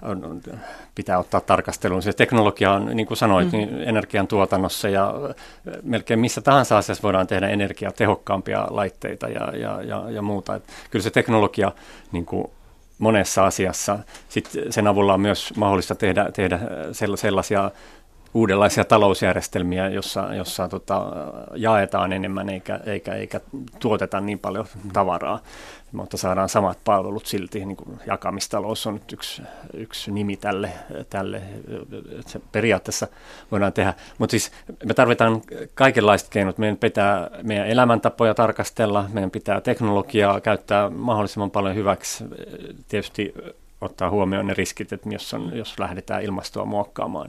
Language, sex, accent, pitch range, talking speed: Finnish, male, native, 95-110 Hz, 135 wpm